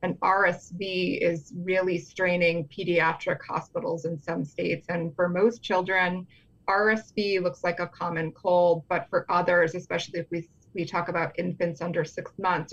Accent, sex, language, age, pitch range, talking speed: American, female, English, 20-39, 170-185 Hz, 155 wpm